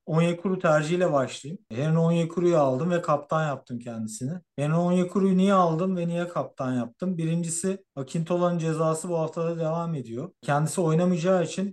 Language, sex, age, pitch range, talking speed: Turkish, male, 50-69, 135-165 Hz, 145 wpm